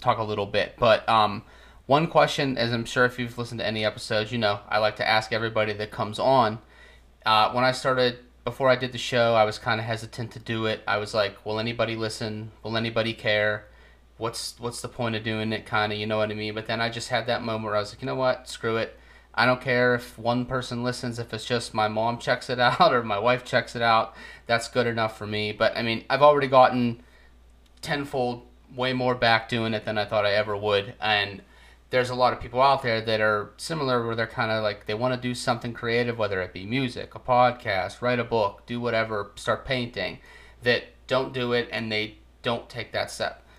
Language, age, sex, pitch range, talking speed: English, 30-49, male, 105-125 Hz, 235 wpm